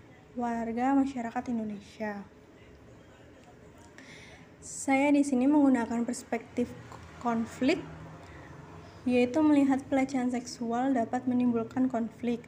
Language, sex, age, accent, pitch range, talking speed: Indonesian, female, 20-39, native, 225-265 Hz, 75 wpm